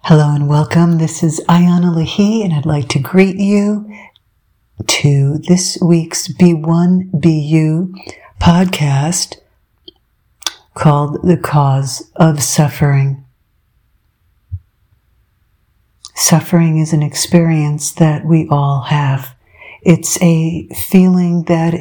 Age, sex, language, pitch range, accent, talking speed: 60-79, female, English, 150-175 Hz, American, 100 wpm